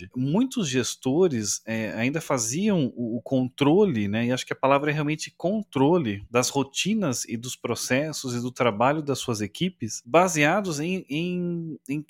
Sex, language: male, Portuguese